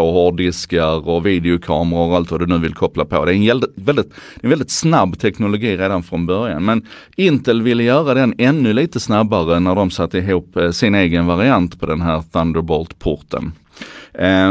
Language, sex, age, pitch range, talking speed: Swedish, male, 30-49, 90-120 Hz, 180 wpm